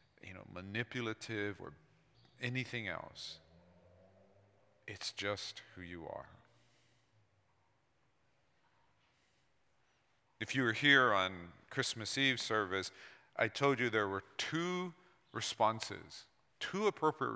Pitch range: 105-135 Hz